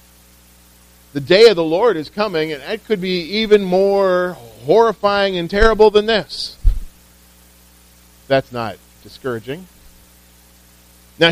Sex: male